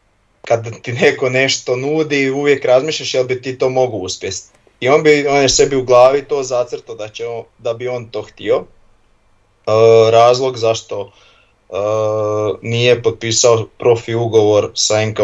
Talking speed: 160 wpm